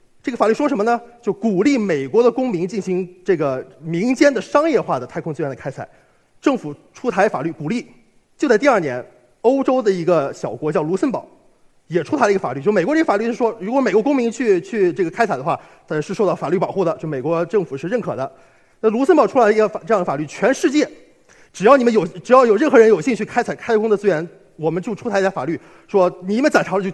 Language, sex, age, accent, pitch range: Chinese, male, 30-49, native, 165-235 Hz